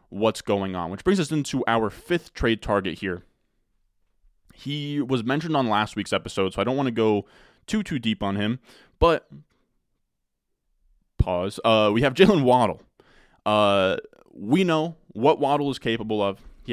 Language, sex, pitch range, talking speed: English, male, 95-125 Hz, 165 wpm